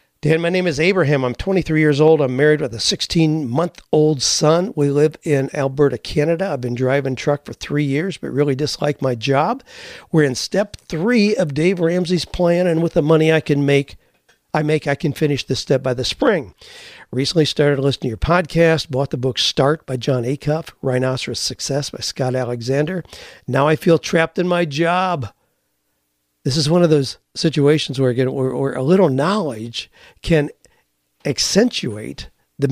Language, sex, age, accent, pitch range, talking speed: English, male, 50-69, American, 135-165 Hz, 180 wpm